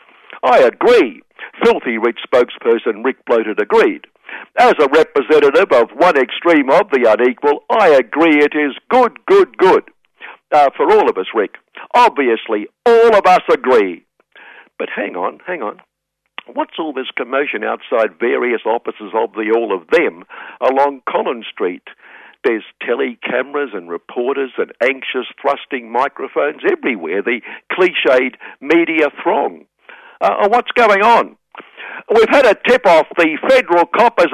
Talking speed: 140 wpm